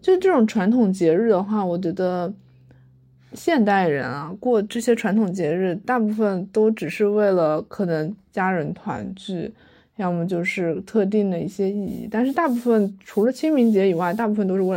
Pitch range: 185-230 Hz